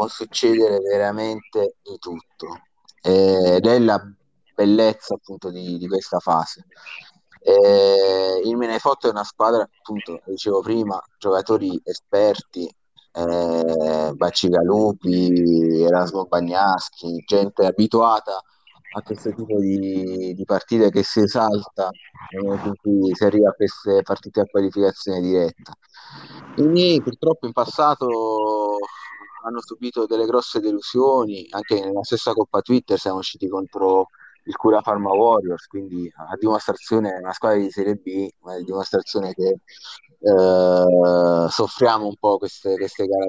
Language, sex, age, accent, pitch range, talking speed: Italian, male, 30-49, native, 95-115 Hz, 120 wpm